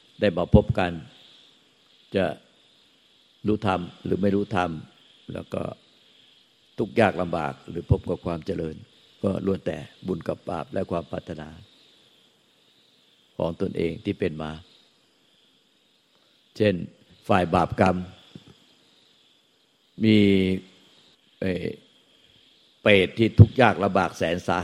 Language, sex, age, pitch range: Thai, male, 60-79, 90-105 Hz